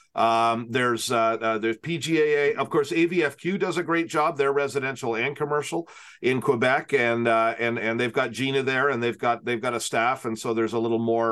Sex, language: male, English